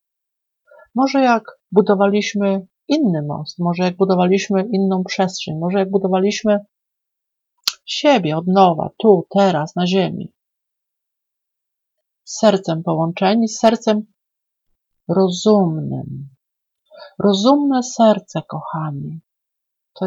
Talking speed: 90 wpm